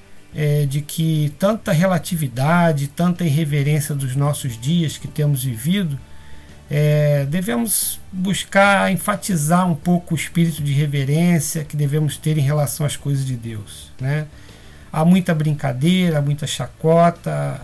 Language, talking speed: Portuguese, 130 wpm